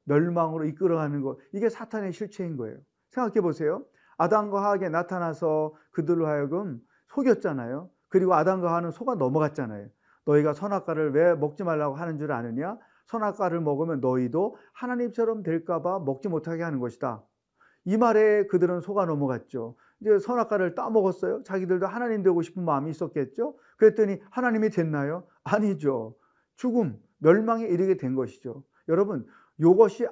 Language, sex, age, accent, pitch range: Korean, male, 40-59, native, 155-205 Hz